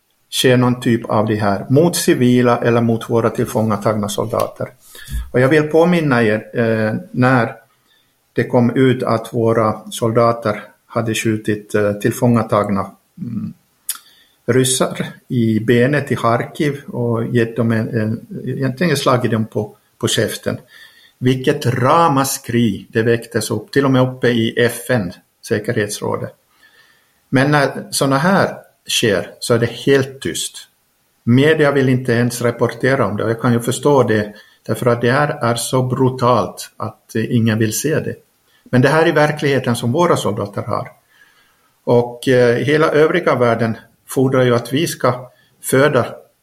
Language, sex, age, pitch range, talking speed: Swedish, male, 50-69, 115-130 Hz, 145 wpm